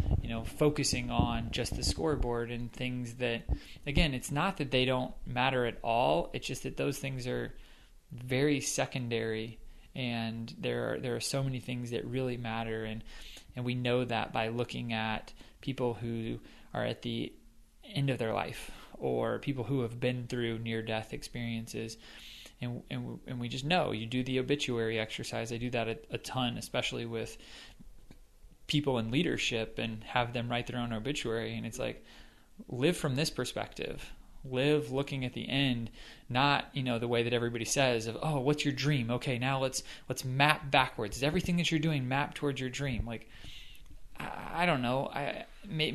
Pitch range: 115-145 Hz